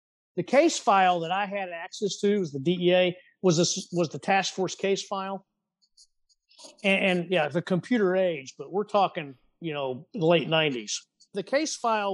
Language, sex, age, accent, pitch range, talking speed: English, male, 50-69, American, 160-200 Hz, 180 wpm